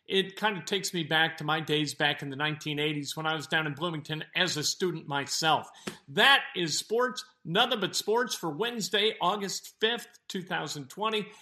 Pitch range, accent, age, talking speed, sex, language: 165-235 Hz, American, 50-69, 180 wpm, male, English